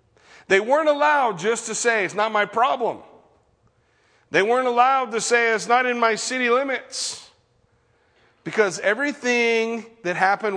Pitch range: 160-220 Hz